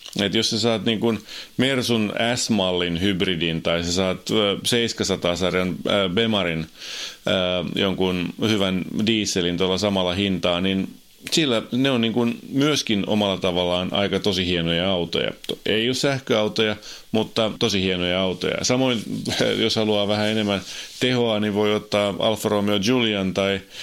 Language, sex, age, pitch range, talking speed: Finnish, male, 30-49, 95-110 Hz, 130 wpm